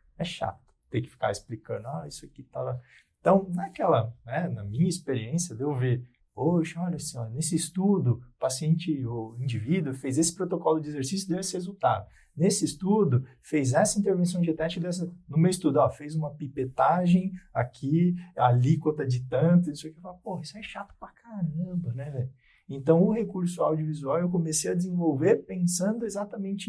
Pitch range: 130-180 Hz